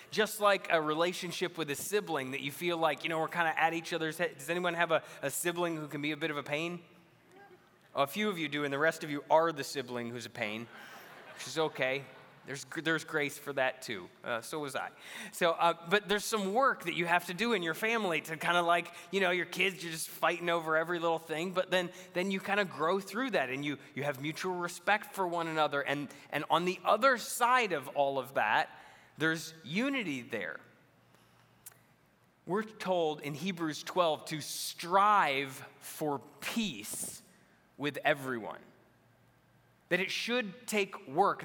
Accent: American